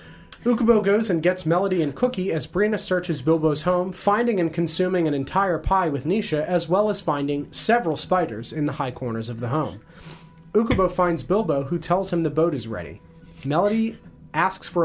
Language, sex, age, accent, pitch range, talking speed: English, male, 30-49, American, 145-180 Hz, 185 wpm